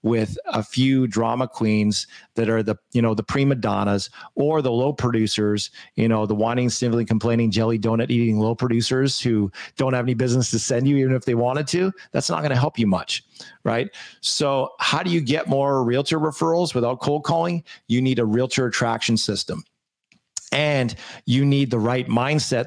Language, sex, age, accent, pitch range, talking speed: English, male, 40-59, American, 115-135 Hz, 190 wpm